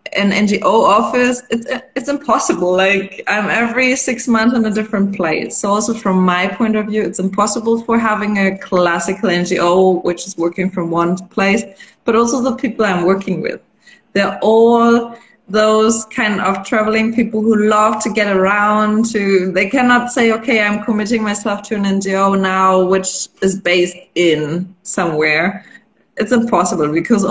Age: 20-39